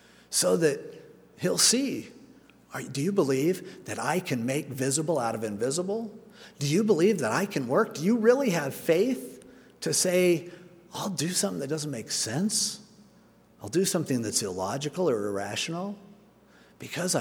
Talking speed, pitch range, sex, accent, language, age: 155 wpm, 125-195 Hz, male, American, English, 50-69